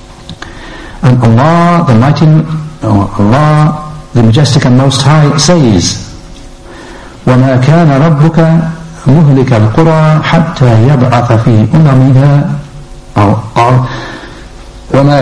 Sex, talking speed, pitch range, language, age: male, 75 wpm, 110-155 Hz, English, 60-79